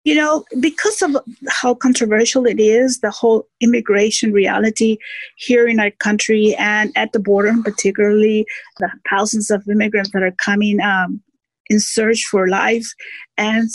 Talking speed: 150 wpm